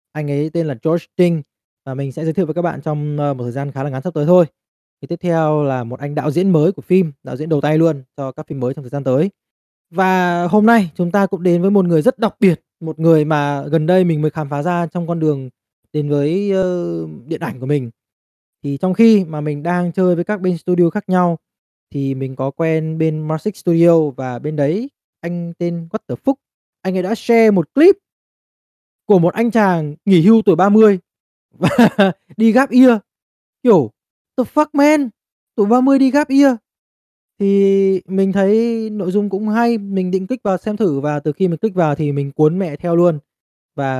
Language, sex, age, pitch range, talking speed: Vietnamese, male, 20-39, 145-195 Hz, 220 wpm